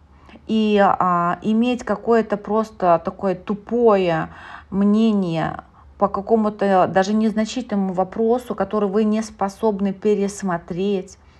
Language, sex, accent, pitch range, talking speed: Russian, female, native, 175-225 Hz, 95 wpm